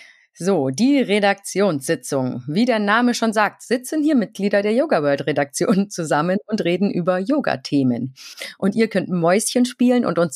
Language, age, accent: German, 30-49, German